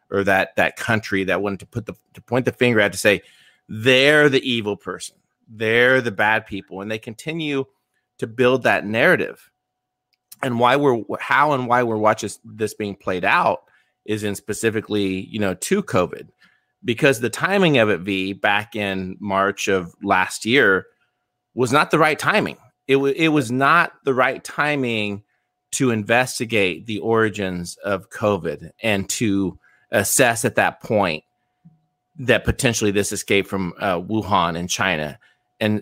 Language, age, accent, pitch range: English, 30-49, American, 100-135 Hz